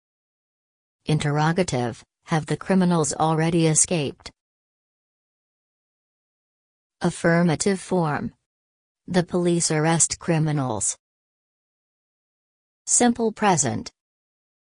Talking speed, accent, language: 55 wpm, American, English